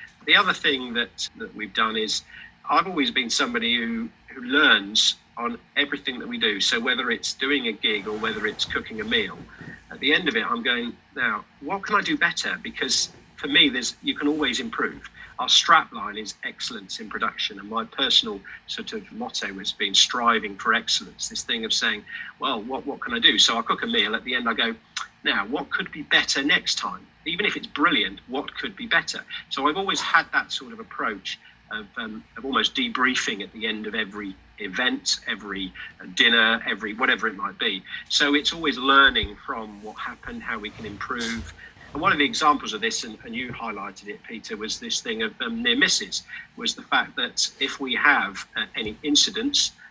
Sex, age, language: male, 40-59, English